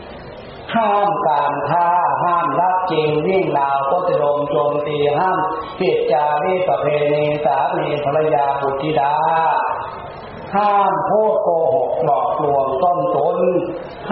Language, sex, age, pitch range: Thai, male, 40-59, 145-195 Hz